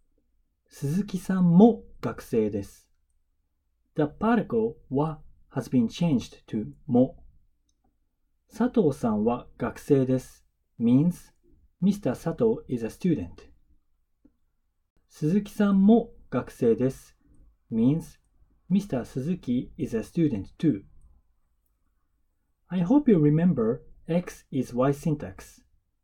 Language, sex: Japanese, male